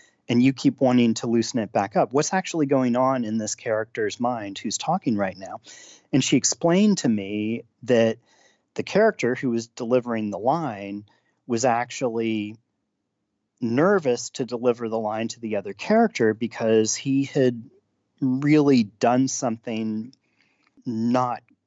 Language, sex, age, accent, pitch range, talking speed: English, male, 40-59, American, 110-145 Hz, 145 wpm